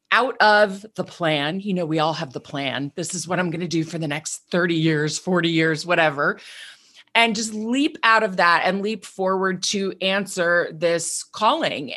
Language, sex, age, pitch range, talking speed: English, female, 30-49, 175-235 Hz, 195 wpm